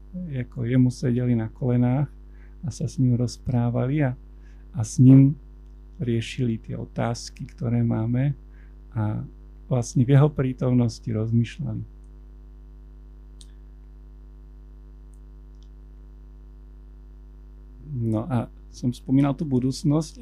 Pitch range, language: 100-140 Hz, Slovak